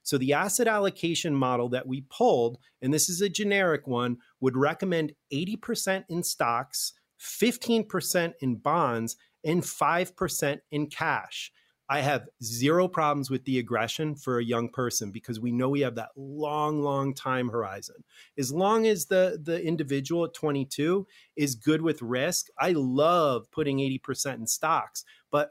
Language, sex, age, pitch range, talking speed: English, male, 30-49, 135-180 Hz, 155 wpm